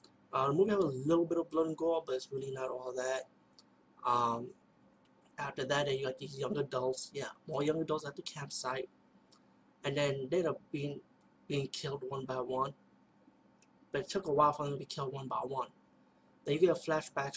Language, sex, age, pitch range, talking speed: English, male, 20-39, 130-155 Hz, 210 wpm